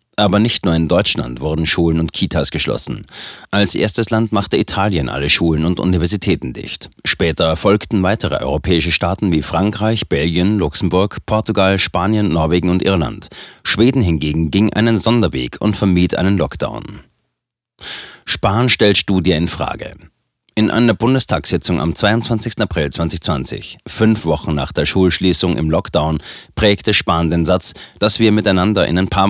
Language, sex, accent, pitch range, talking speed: German, male, German, 85-105 Hz, 145 wpm